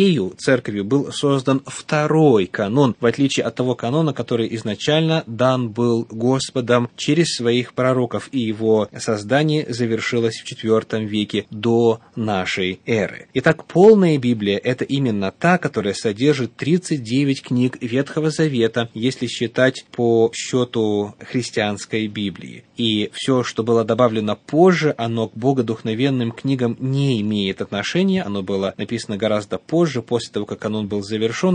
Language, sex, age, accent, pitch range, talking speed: Russian, male, 20-39, native, 110-140 Hz, 135 wpm